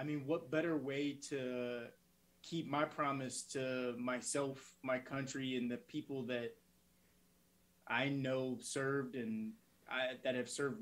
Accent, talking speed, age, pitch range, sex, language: American, 135 wpm, 20-39, 115-135 Hz, male, English